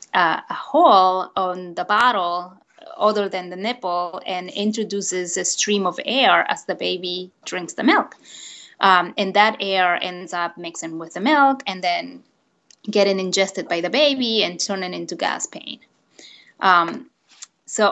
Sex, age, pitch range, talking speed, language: female, 20-39, 180-215 Hz, 150 wpm, English